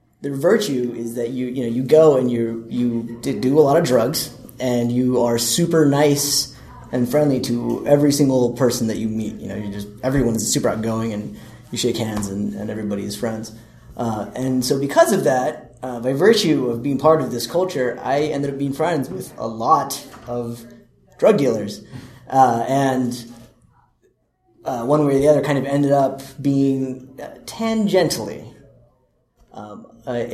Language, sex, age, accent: English, male, 30-49, American